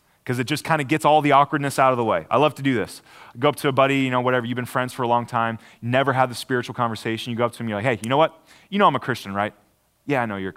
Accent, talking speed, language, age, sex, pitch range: American, 340 wpm, English, 30-49, male, 115-155 Hz